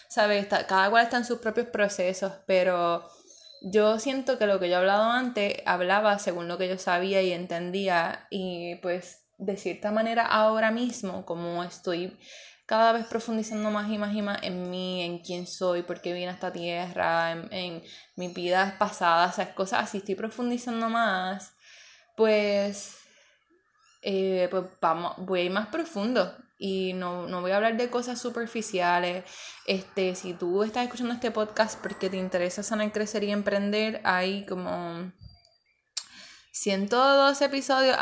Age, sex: 20-39, female